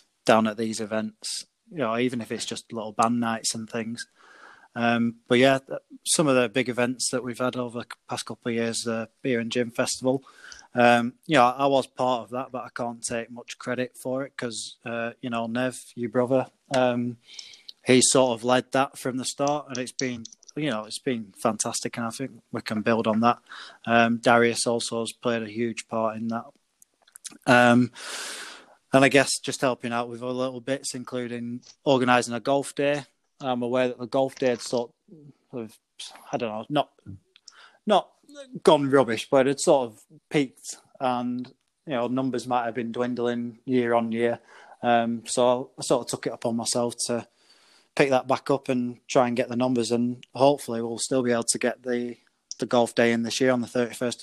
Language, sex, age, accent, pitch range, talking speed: English, male, 20-39, British, 115-130 Hz, 200 wpm